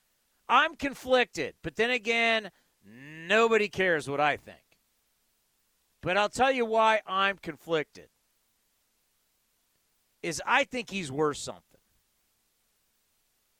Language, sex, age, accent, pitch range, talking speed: English, male, 50-69, American, 150-210 Hz, 100 wpm